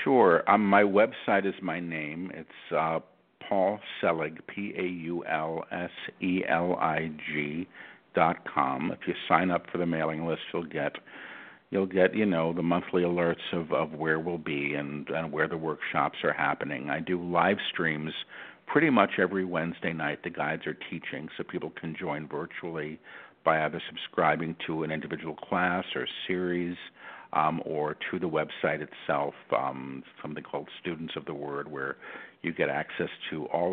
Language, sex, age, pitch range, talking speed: English, male, 50-69, 80-95 Hz, 175 wpm